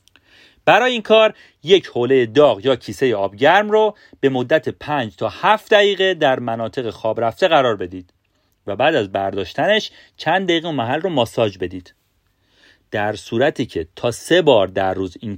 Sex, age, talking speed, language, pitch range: male, 40-59, 165 wpm, Persian, 100-165 Hz